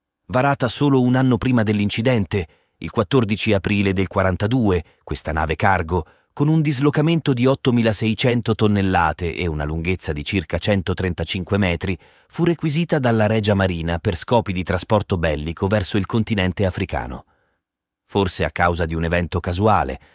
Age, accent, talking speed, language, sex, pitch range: 30-49, native, 145 wpm, Italian, male, 80-110 Hz